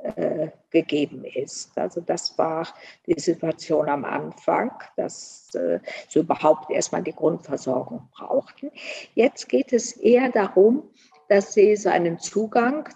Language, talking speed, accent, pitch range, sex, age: German, 125 wpm, German, 170-225 Hz, female, 50-69